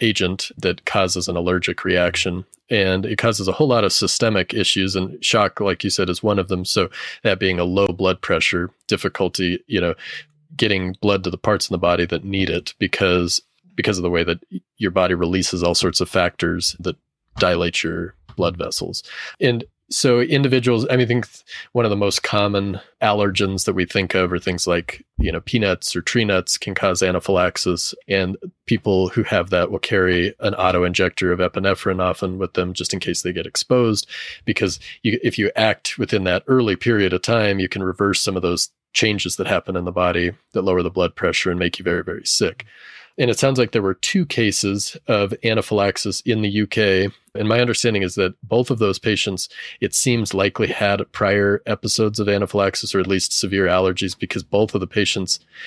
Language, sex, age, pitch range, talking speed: English, male, 30-49, 90-110 Hz, 200 wpm